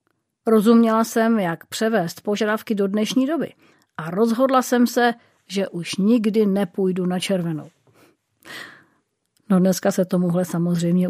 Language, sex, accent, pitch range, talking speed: Czech, female, native, 180-225 Hz, 125 wpm